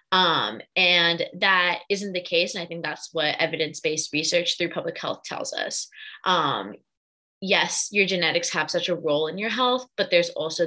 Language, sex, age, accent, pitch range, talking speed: English, female, 20-39, American, 165-200 Hz, 180 wpm